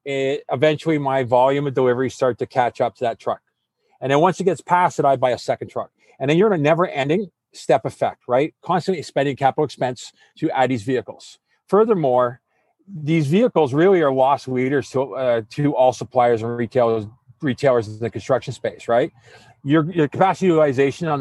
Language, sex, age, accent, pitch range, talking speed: English, male, 40-59, American, 130-165 Hz, 190 wpm